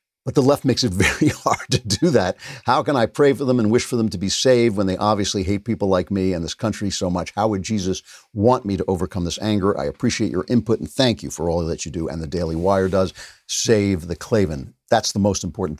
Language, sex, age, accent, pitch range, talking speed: English, male, 50-69, American, 90-120 Hz, 260 wpm